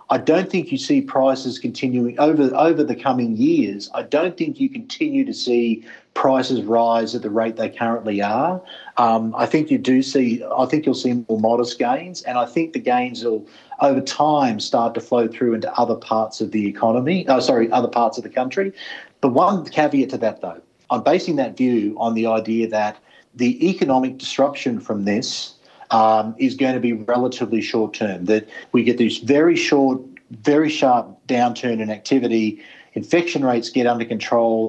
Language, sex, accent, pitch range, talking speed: English, male, Australian, 115-140 Hz, 185 wpm